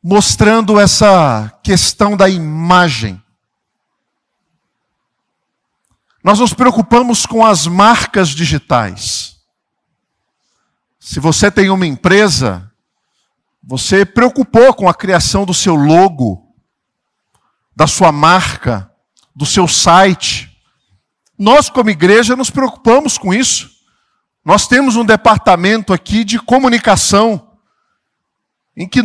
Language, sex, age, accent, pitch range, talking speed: Portuguese, male, 50-69, Brazilian, 160-230 Hz, 95 wpm